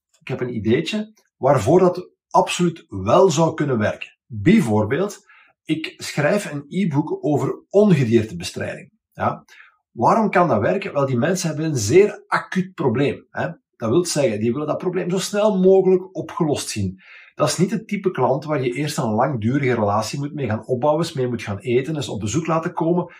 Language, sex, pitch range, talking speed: Dutch, male, 120-180 Hz, 180 wpm